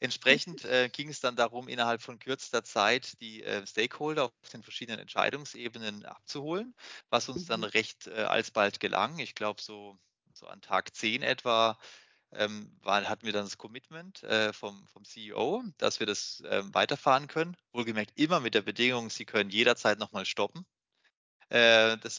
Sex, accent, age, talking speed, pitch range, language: male, German, 20-39, 160 wpm, 105-130 Hz, German